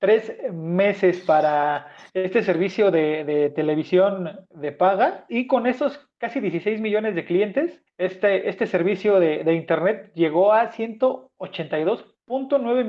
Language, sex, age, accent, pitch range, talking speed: Spanish, male, 40-59, Mexican, 180-230 Hz, 125 wpm